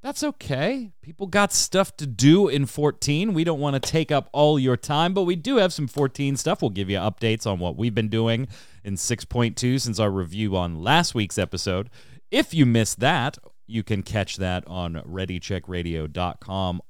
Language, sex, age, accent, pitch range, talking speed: English, male, 30-49, American, 95-130 Hz, 190 wpm